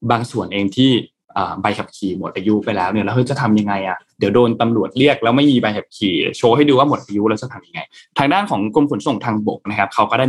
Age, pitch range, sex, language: 20-39, 105-125 Hz, male, Thai